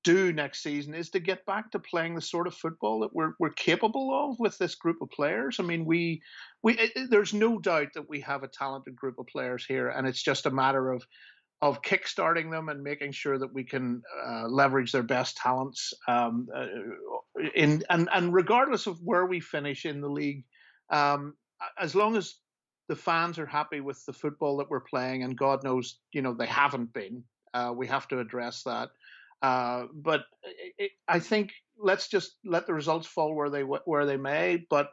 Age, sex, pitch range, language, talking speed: 50-69, male, 130-170 Hz, English, 205 wpm